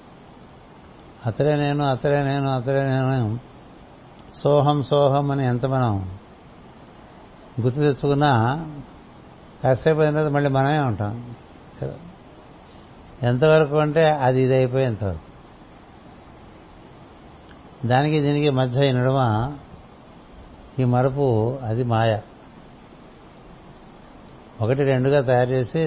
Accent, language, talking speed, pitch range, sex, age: native, Telugu, 75 wpm, 120-140 Hz, male, 60-79